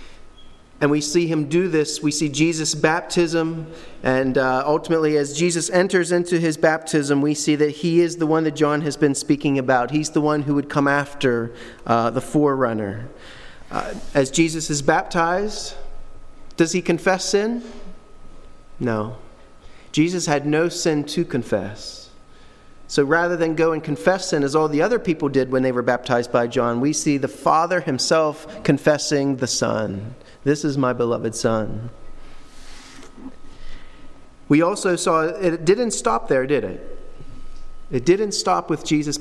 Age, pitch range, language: 30-49, 135-175 Hz, English